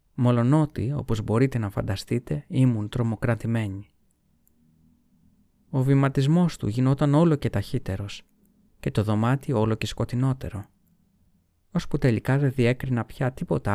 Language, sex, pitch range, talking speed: Greek, male, 105-140 Hz, 115 wpm